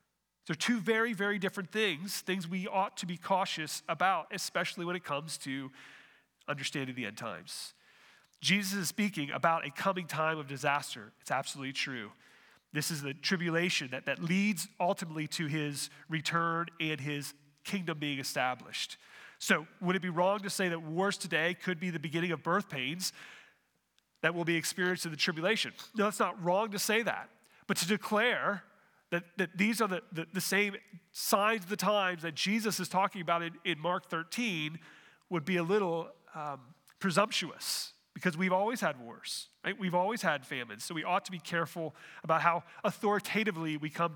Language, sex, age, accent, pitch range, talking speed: English, male, 30-49, American, 155-195 Hz, 180 wpm